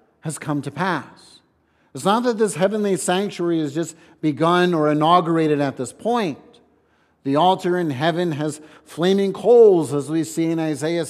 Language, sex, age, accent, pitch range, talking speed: English, male, 50-69, American, 150-185 Hz, 160 wpm